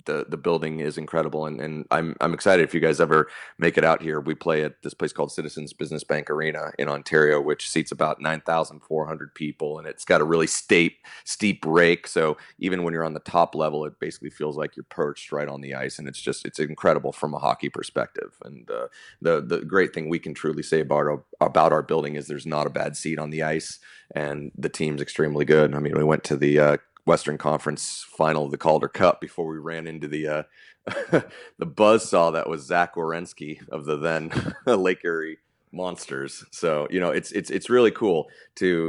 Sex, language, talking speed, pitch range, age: male, English, 220 wpm, 75-80 Hz, 30-49